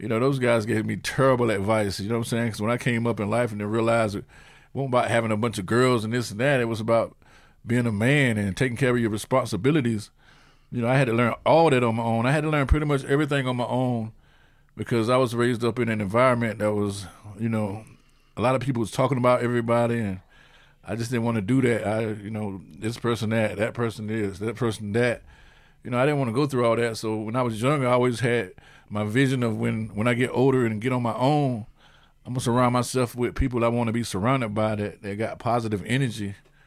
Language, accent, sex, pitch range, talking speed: English, American, male, 110-130 Hz, 255 wpm